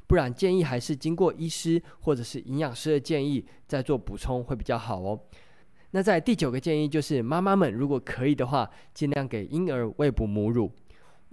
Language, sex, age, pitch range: Chinese, male, 20-39, 115-165 Hz